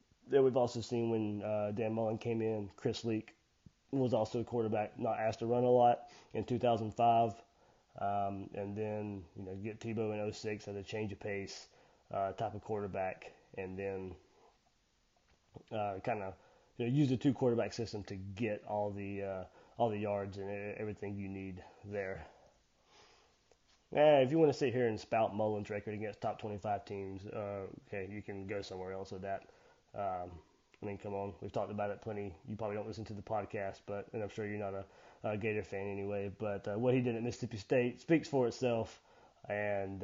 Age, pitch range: 20-39, 100-115 Hz